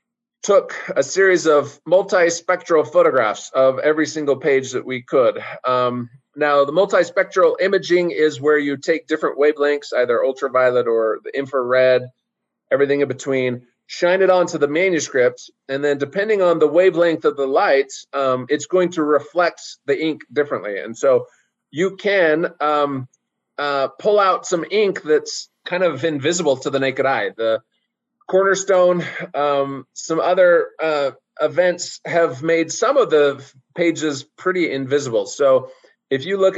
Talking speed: 150 wpm